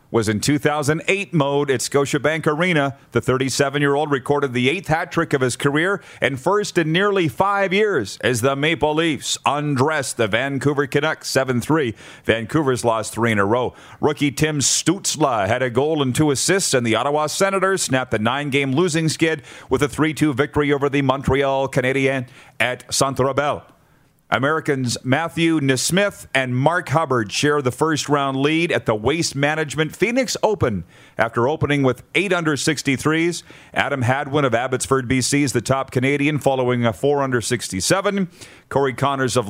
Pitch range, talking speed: 130-155 Hz, 160 wpm